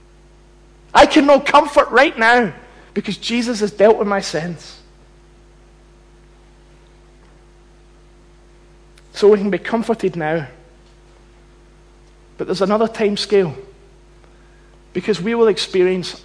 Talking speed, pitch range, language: 105 wpm, 185-245 Hz, English